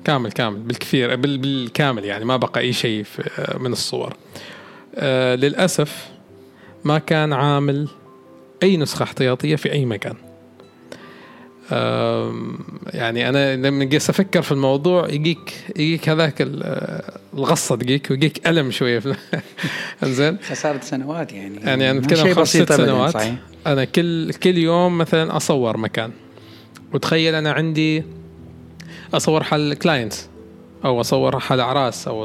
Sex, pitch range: male, 115-160 Hz